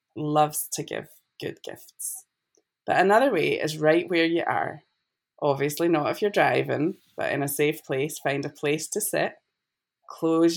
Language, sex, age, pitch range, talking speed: English, female, 20-39, 150-170 Hz, 165 wpm